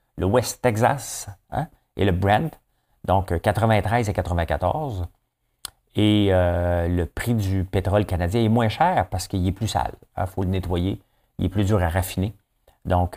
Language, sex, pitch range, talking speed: French, male, 85-105 Hz, 175 wpm